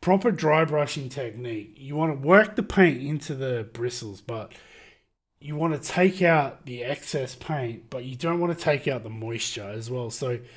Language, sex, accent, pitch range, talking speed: English, male, Australian, 115-155 Hz, 195 wpm